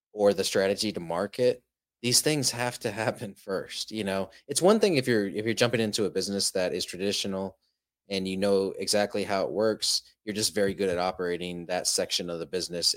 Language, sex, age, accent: English, male, 30-49, American